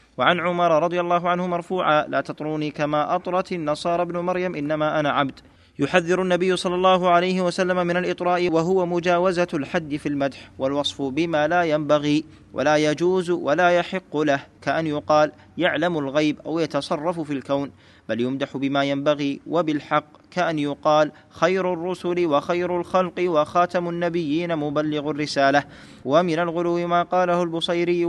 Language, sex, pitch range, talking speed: Arabic, male, 140-175 Hz, 140 wpm